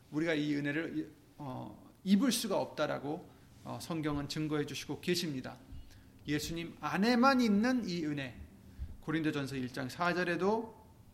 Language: Korean